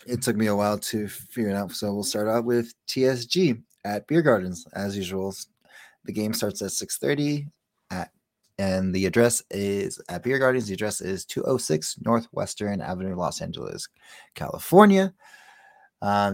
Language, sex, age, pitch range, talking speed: English, male, 20-39, 95-130 Hz, 160 wpm